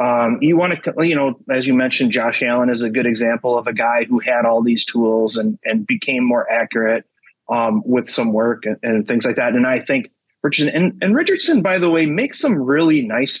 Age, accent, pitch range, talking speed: 30-49, American, 120-180 Hz, 230 wpm